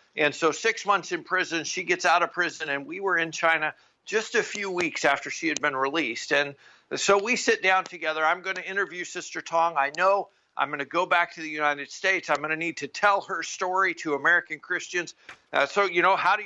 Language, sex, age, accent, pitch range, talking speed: English, male, 50-69, American, 155-195 Hz, 235 wpm